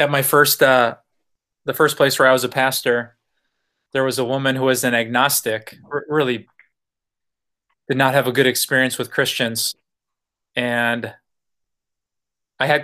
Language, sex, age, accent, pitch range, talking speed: English, male, 20-39, American, 120-145 Hz, 150 wpm